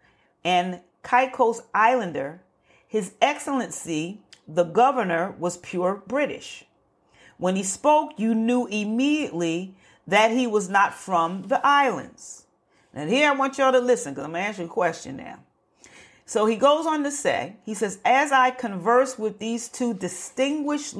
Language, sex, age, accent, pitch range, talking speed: English, female, 40-59, American, 185-265 Hz, 155 wpm